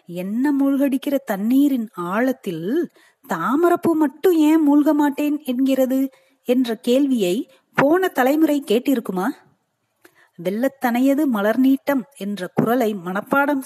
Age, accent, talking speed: 30-49, native, 90 wpm